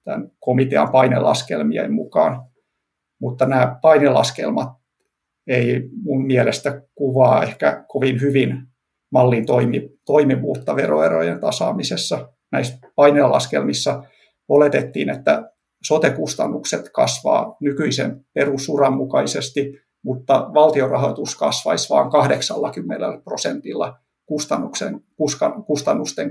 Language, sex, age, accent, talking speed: Finnish, male, 50-69, native, 75 wpm